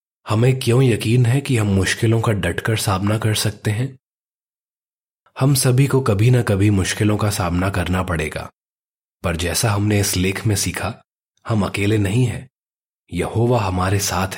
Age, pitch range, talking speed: 20-39, 95-120 Hz, 160 wpm